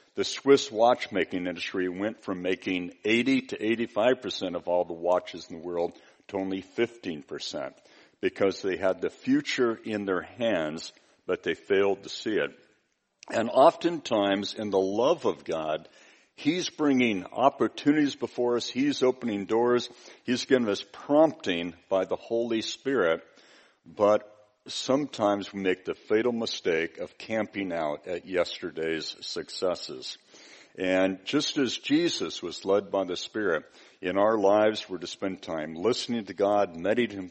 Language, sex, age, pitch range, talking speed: English, male, 60-79, 95-150 Hz, 145 wpm